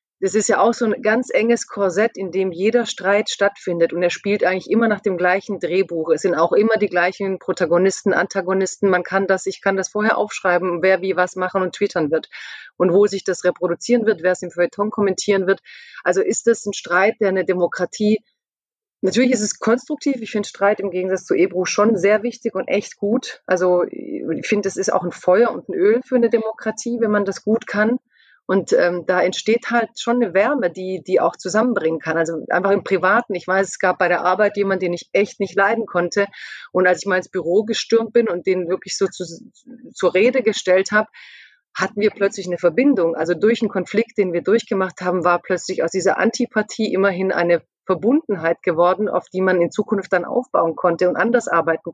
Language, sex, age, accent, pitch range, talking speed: German, female, 30-49, German, 180-220 Hz, 215 wpm